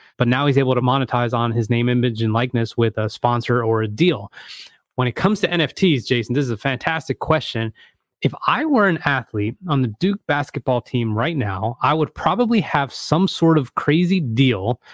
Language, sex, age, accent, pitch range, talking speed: English, male, 20-39, American, 120-150 Hz, 200 wpm